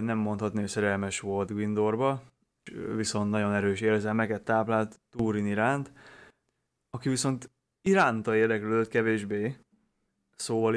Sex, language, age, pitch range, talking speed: male, Hungarian, 20-39, 105-115 Hz, 105 wpm